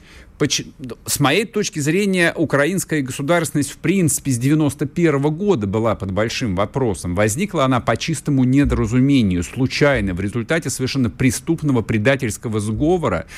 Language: Russian